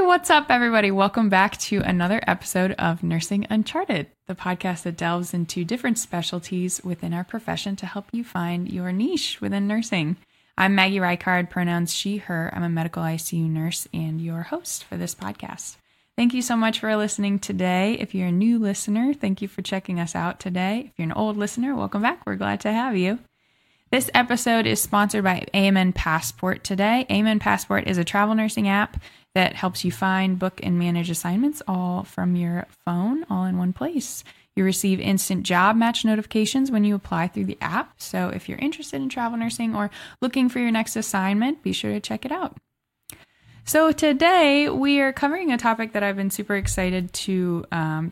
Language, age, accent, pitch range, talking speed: English, 10-29, American, 180-230 Hz, 190 wpm